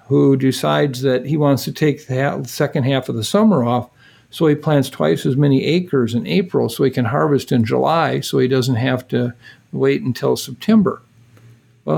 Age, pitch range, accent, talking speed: 50-69, 125-145 Hz, American, 190 wpm